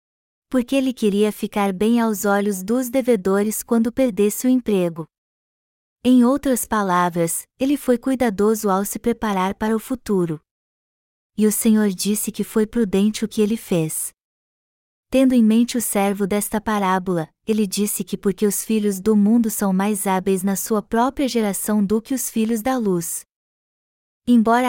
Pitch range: 200-235 Hz